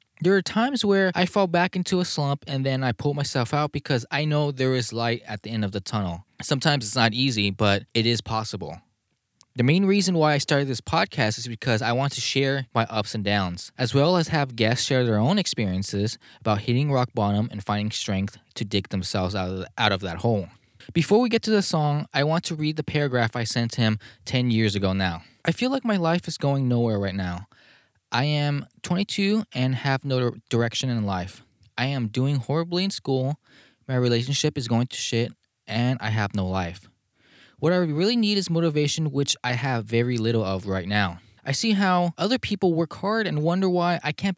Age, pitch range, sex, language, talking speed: 20-39, 110-165 Hz, male, English, 215 wpm